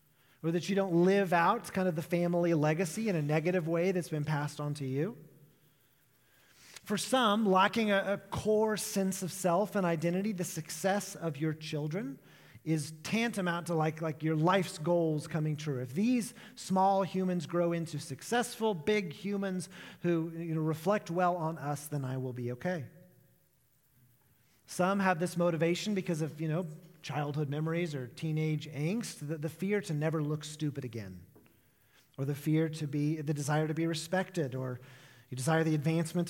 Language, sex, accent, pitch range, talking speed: English, male, American, 145-185 Hz, 170 wpm